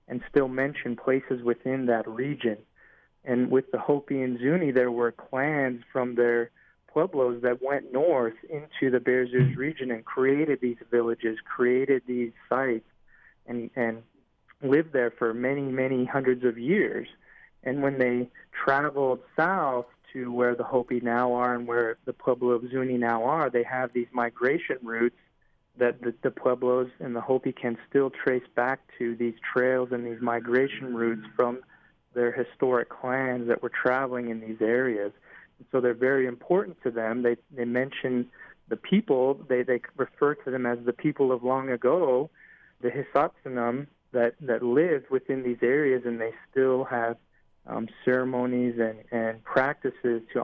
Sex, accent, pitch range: male, American, 120-130 Hz